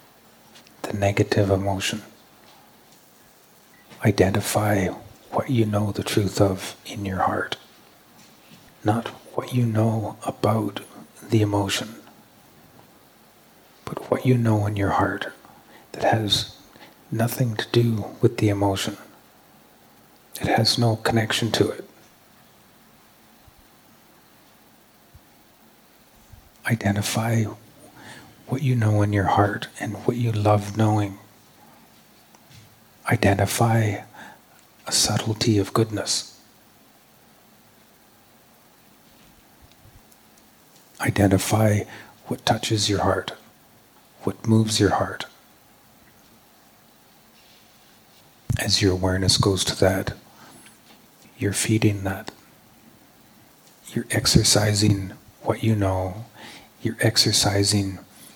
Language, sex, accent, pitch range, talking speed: English, male, American, 100-115 Hz, 85 wpm